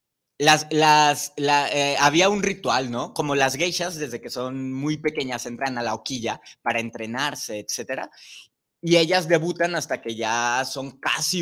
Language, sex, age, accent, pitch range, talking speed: Spanish, male, 20-39, Mexican, 120-155 Hz, 165 wpm